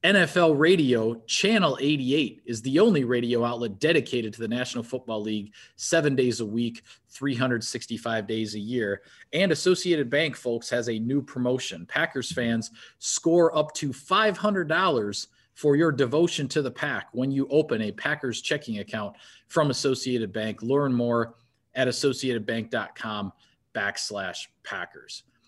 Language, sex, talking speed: English, male, 135 wpm